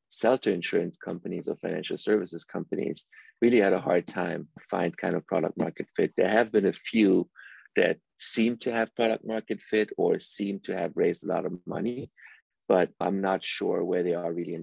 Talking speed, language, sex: 200 wpm, English, male